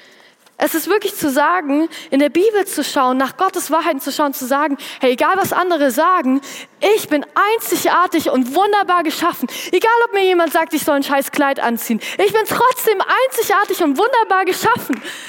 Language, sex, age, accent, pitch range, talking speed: German, female, 20-39, German, 290-390 Hz, 180 wpm